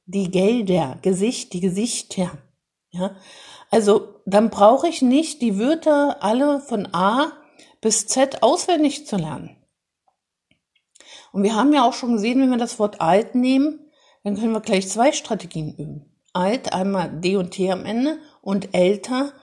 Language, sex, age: German, female, 60-79